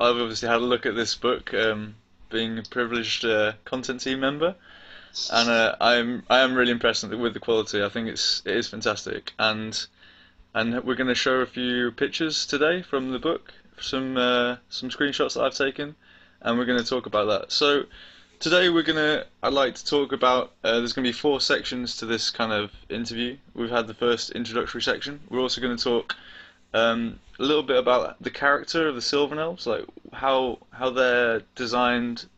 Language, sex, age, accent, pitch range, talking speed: English, male, 20-39, British, 110-130 Hz, 200 wpm